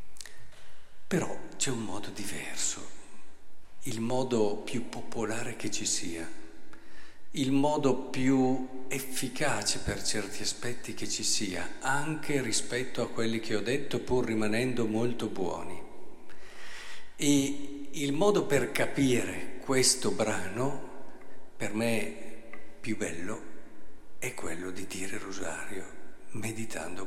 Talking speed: 110 wpm